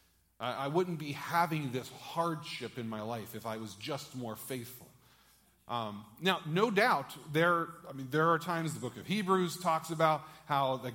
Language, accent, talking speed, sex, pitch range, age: English, American, 180 wpm, male, 130-185 Hz, 40-59